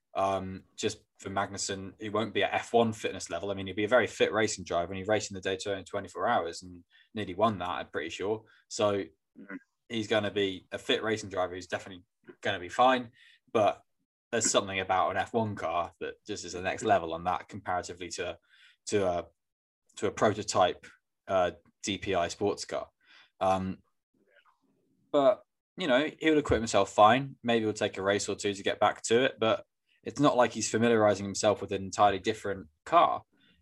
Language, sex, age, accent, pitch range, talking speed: English, male, 10-29, British, 95-115 Hz, 200 wpm